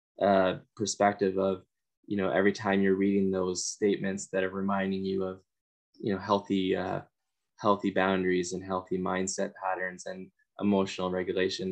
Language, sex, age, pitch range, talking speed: English, male, 10-29, 95-105 Hz, 150 wpm